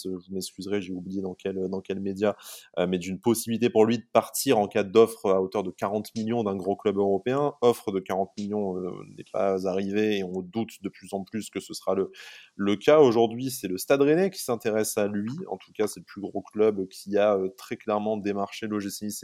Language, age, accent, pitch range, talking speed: French, 20-39, French, 95-115 Hz, 230 wpm